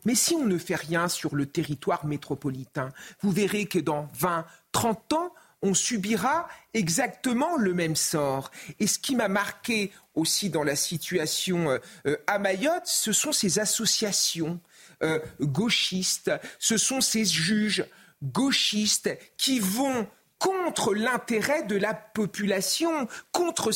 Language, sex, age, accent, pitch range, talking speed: French, male, 40-59, French, 180-250 Hz, 130 wpm